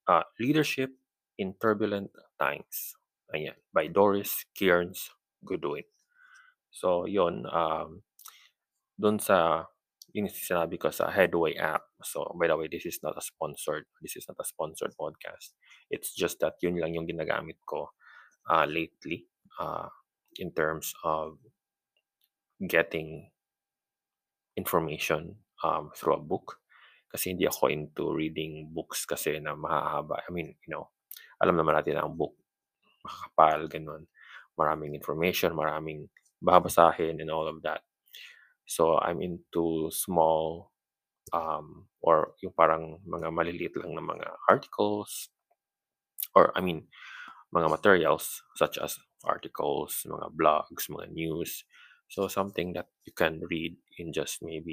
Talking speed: 130 wpm